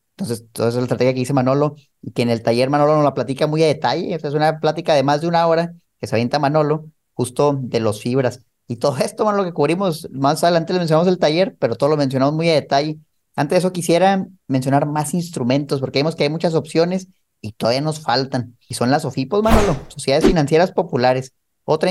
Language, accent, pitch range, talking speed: Spanish, Mexican, 130-170 Hz, 220 wpm